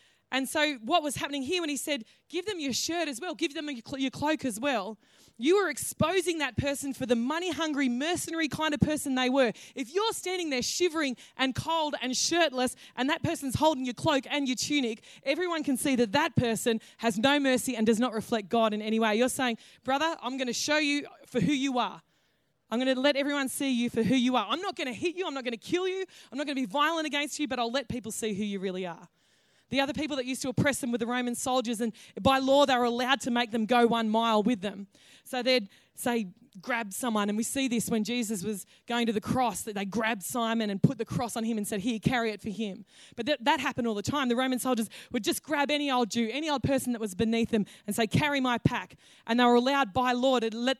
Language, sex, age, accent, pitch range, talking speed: English, female, 20-39, Australian, 230-290 Hz, 255 wpm